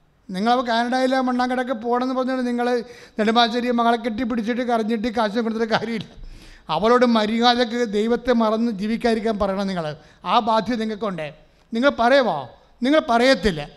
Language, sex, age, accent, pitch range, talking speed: English, male, 30-49, Indian, 190-235 Hz, 130 wpm